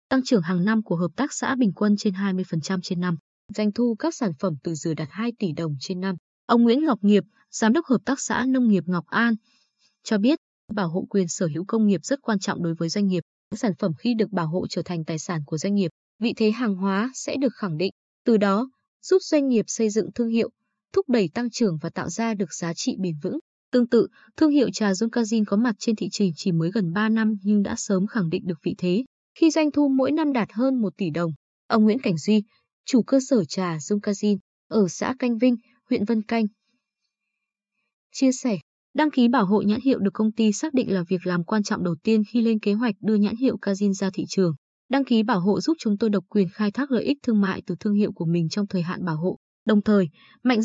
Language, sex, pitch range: Vietnamese, female, 185-235 Hz